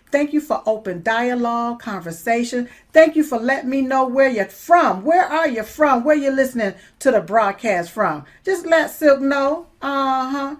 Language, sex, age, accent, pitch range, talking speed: English, female, 50-69, American, 220-275 Hz, 185 wpm